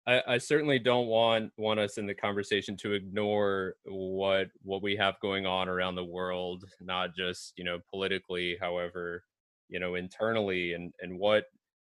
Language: English